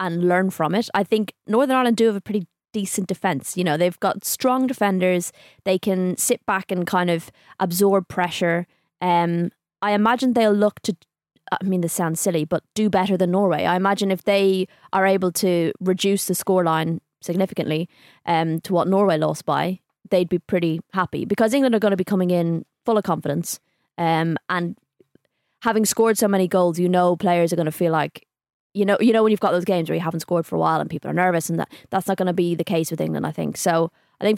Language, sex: English, female